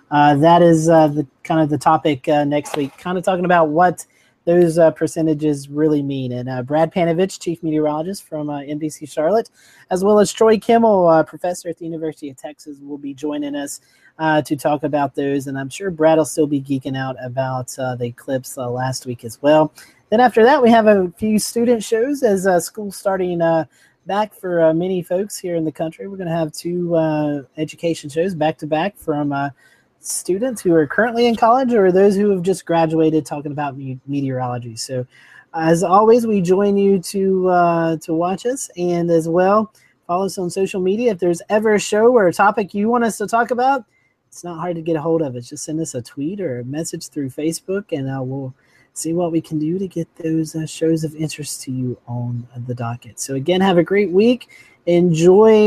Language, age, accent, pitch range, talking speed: English, 30-49, American, 145-190 Hz, 220 wpm